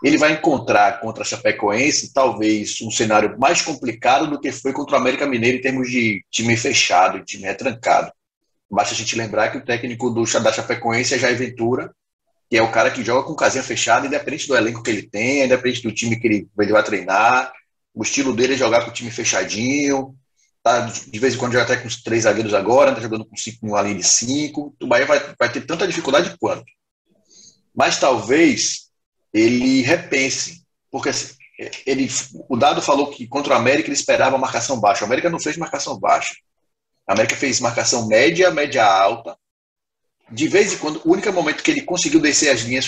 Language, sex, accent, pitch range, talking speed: Portuguese, male, Brazilian, 115-135 Hz, 195 wpm